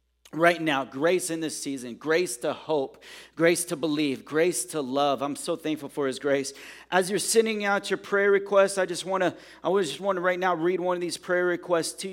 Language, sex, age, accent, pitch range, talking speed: English, male, 40-59, American, 150-185 Hz, 230 wpm